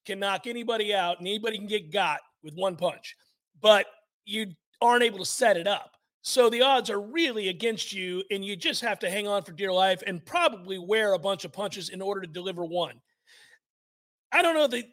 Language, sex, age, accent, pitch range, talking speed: English, male, 40-59, American, 190-245 Hz, 215 wpm